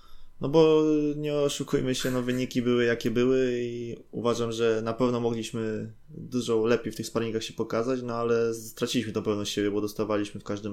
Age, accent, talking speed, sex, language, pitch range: 20-39, native, 185 wpm, male, Polish, 105-125 Hz